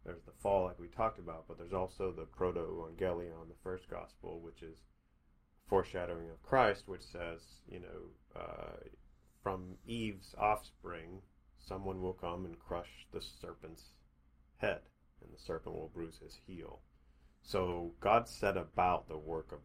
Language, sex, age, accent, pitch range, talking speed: English, male, 30-49, American, 75-90 Hz, 155 wpm